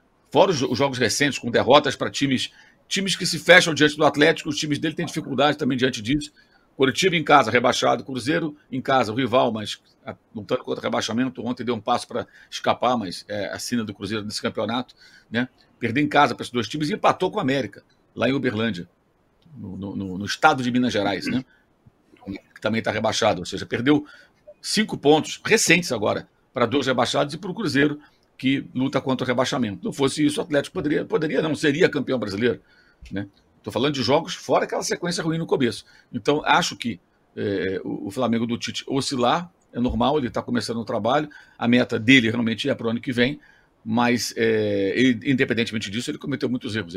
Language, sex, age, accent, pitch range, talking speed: Portuguese, male, 50-69, Brazilian, 115-150 Hz, 195 wpm